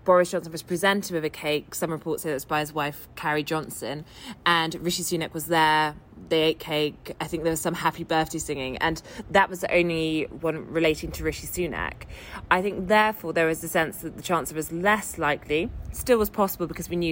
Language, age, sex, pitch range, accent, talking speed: English, 20-39, female, 150-180 Hz, British, 220 wpm